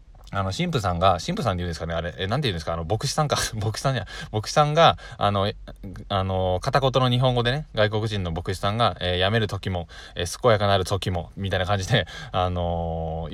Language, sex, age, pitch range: Japanese, male, 20-39, 90-130 Hz